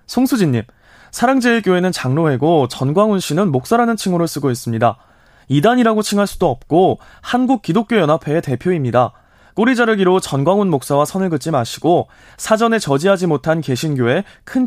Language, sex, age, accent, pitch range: Korean, male, 20-39, native, 140-210 Hz